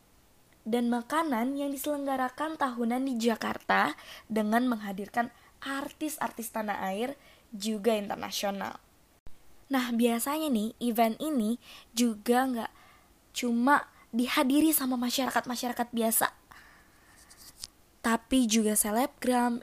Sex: female